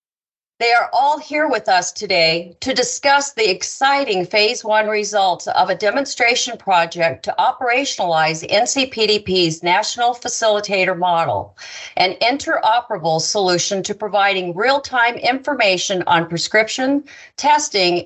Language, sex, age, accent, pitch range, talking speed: English, female, 50-69, American, 180-245 Hz, 115 wpm